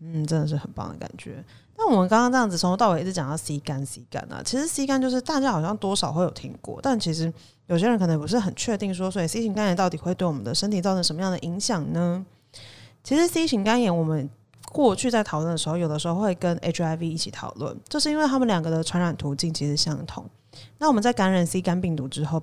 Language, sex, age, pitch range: Chinese, female, 30-49, 155-195 Hz